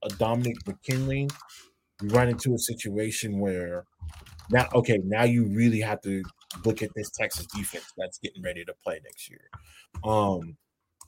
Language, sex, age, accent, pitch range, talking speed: English, male, 20-39, American, 110-140 Hz, 155 wpm